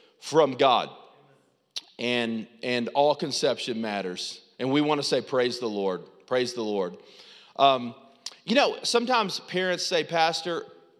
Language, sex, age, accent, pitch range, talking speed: English, male, 40-59, American, 150-245 Hz, 135 wpm